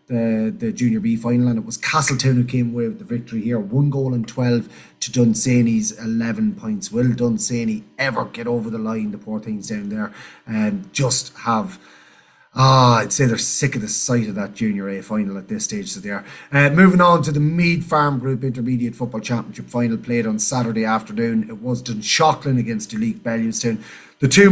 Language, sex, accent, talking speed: English, male, Irish, 205 wpm